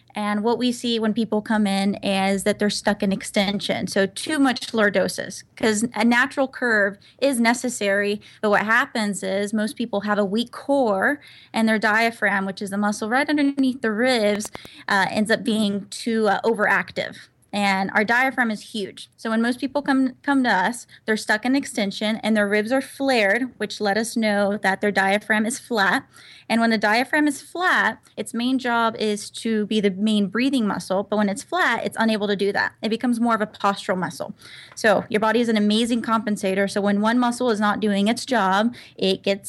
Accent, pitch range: American, 205-235 Hz